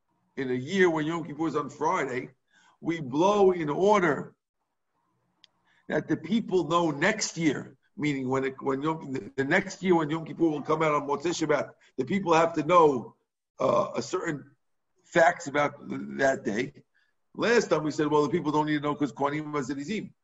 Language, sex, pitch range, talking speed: English, male, 155-200 Hz, 185 wpm